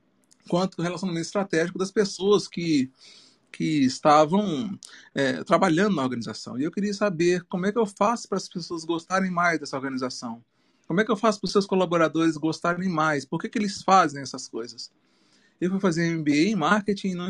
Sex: male